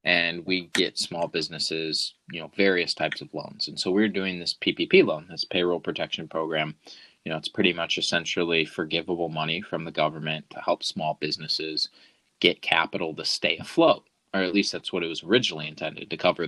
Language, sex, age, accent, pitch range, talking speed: English, male, 20-39, American, 85-105 Hz, 195 wpm